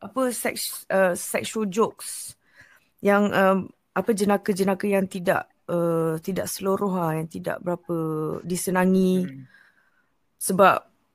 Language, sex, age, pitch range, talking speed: Malay, female, 20-39, 185-230 Hz, 100 wpm